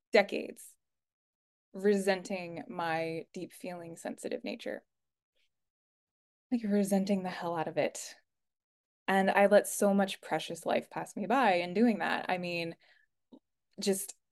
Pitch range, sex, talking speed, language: 175-200 Hz, female, 125 wpm, English